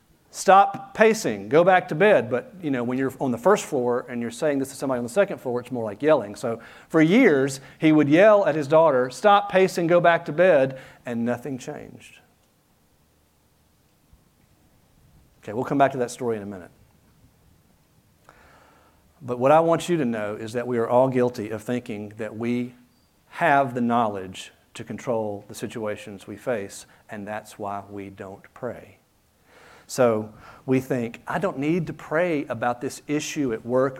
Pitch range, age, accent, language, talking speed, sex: 115-165 Hz, 50-69, American, English, 180 wpm, male